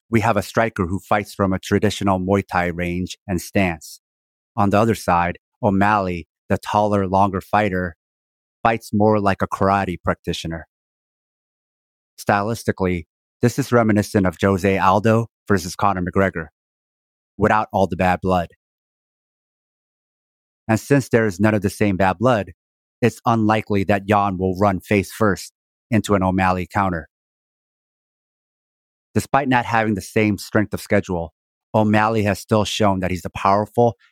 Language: English